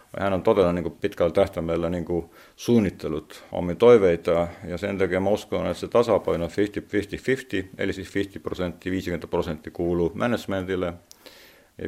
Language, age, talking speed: Finnish, 50-69, 130 wpm